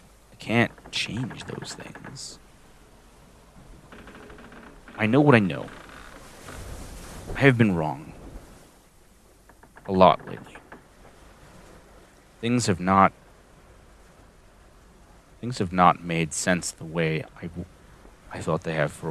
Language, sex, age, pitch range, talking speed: English, male, 30-49, 80-95 Hz, 105 wpm